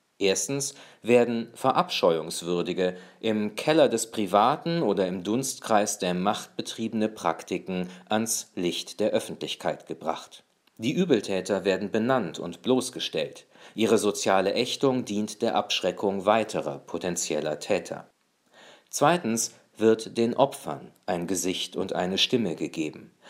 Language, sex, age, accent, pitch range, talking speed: German, male, 40-59, German, 95-125 Hz, 115 wpm